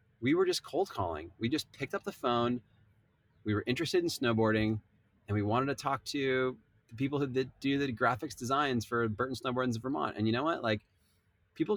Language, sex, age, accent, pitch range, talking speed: English, male, 20-39, American, 105-125 Hz, 210 wpm